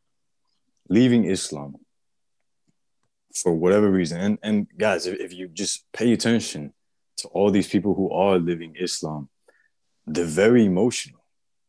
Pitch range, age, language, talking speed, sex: 90-110 Hz, 20-39, English, 130 wpm, male